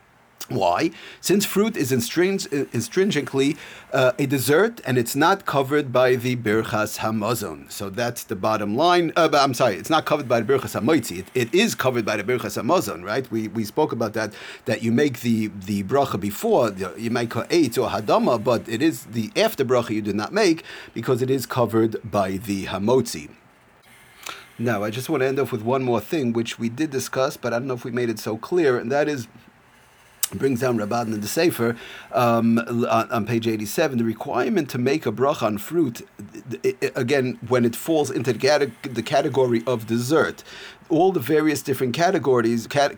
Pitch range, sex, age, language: 115-135 Hz, male, 40-59, English